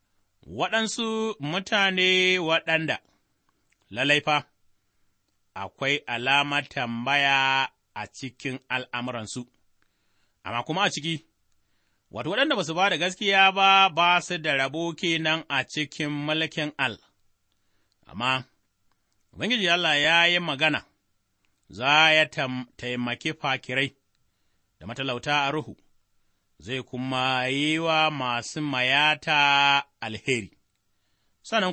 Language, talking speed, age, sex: English, 95 wpm, 30-49, male